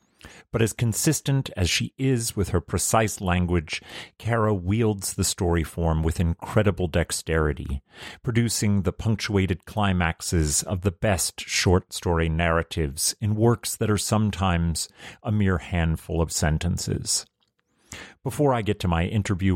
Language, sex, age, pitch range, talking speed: English, male, 40-59, 85-105 Hz, 135 wpm